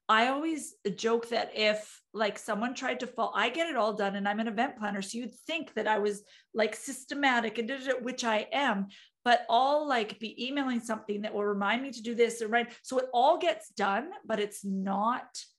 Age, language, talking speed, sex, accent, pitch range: 40-59, English, 220 wpm, female, American, 210-245 Hz